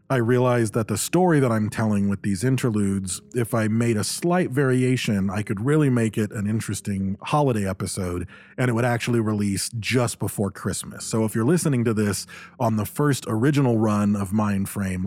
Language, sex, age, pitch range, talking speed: English, male, 40-59, 100-120 Hz, 185 wpm